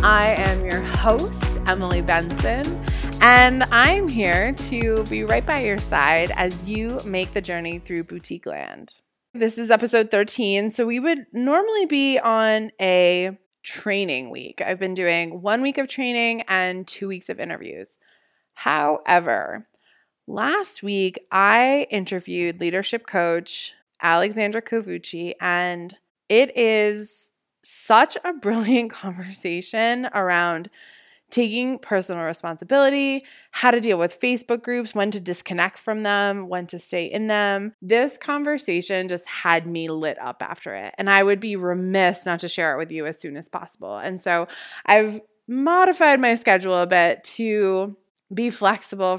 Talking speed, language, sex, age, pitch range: 145 wpm, English, female, 20-39, 180-230 Hz